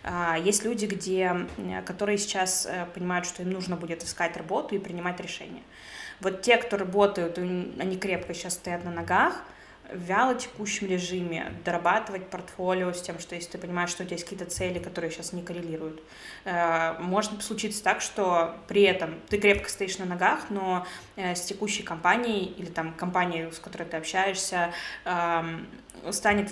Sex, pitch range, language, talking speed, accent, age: female, 175-205 Hz, Russian, 155 wpm, native, 20-39